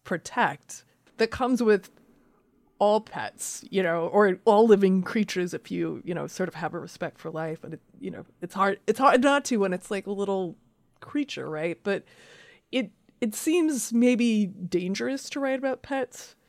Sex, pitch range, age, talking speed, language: female, 180-220 Hz, 30-49, 180 wpm, English